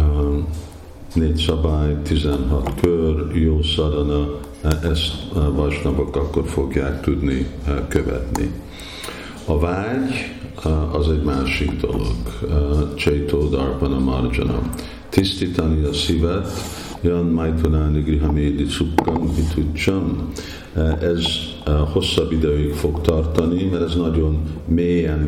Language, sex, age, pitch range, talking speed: Hungarian, male, 50-69, 75-85 Hz, 95 wpm